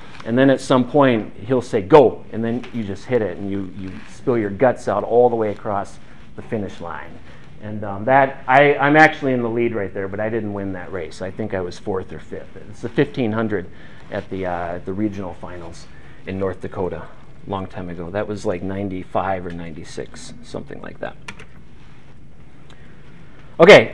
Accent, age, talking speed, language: American, 40-59, 195 wpm, English